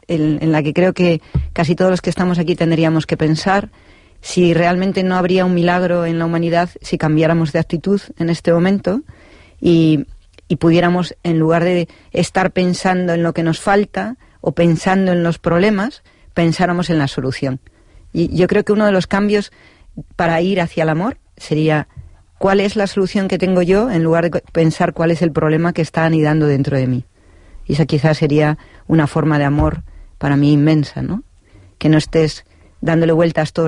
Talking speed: 190 wpm